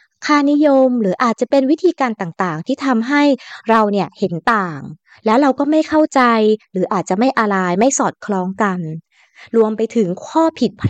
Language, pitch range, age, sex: Thai, 195-265 Hz, 20-39, female